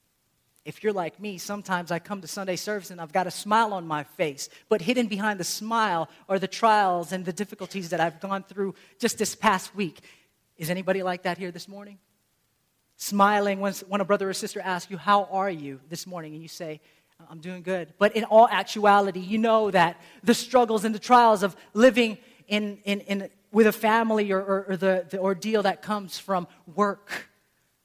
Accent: American